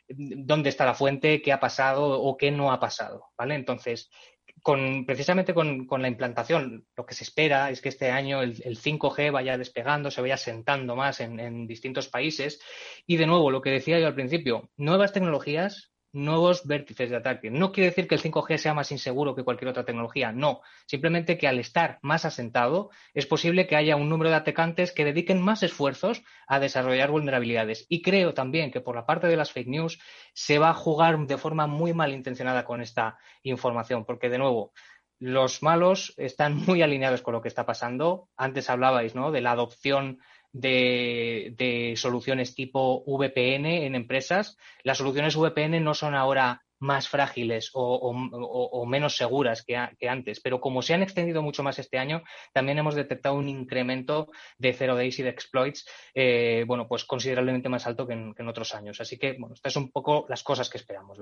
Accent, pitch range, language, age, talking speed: Spanish, 125-150 Hz, Spanish, 20-39, 190 wpm